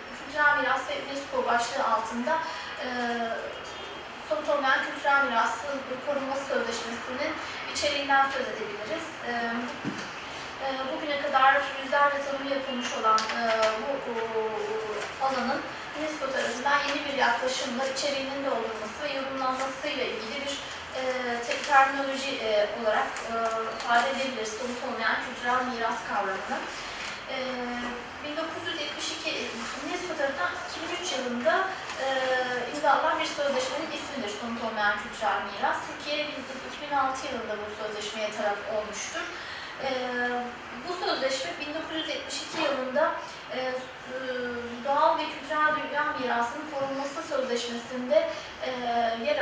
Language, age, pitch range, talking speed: Turkish, 30-49, 240-290 Hz, 105 wpm